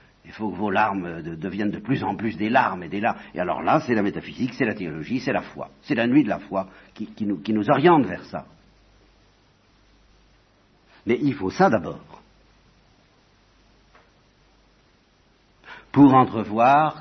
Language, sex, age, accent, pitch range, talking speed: English, male, 60-79, French, 100-130 Hz, 160 wpm